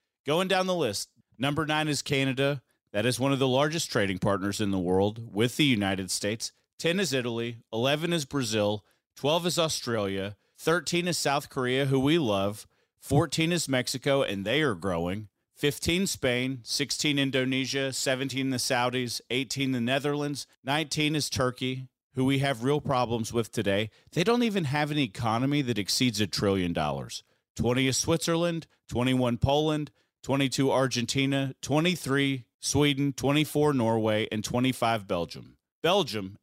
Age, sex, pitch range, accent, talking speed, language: 40-59, male, 115-145 Hz, American, 150 wpm, English